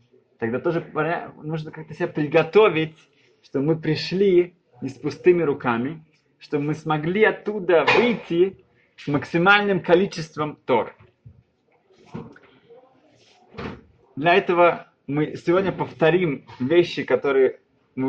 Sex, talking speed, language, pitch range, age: male, 100 wpm, Russian, 130-175 Hz, 20-39